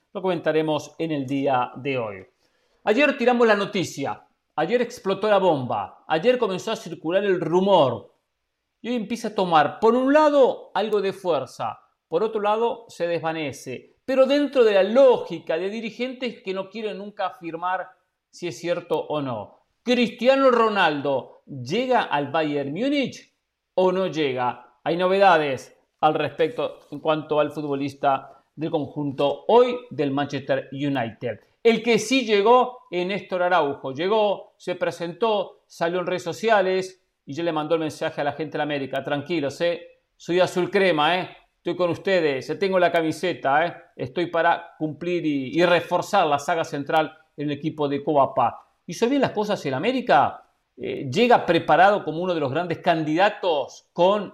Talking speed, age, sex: 160 wpm, 50-69, male